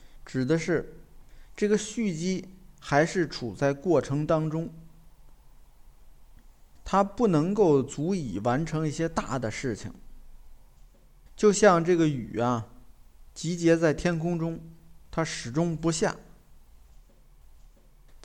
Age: 50-69